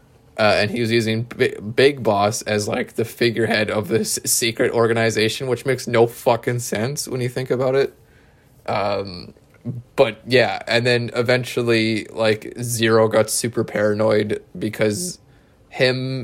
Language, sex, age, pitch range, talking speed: English, male, 20-39, 110-125 Hz, 145 wpm